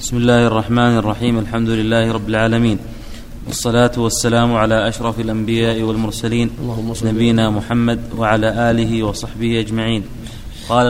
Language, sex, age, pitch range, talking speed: Arabic, male, 30-49, 115-130 Hz, 115 wpm